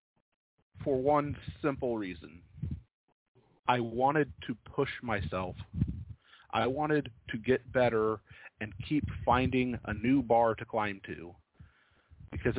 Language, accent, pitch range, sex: English, American, 105-130 Hz, male